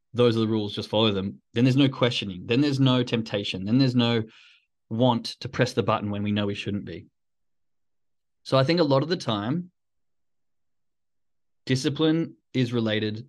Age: 20-39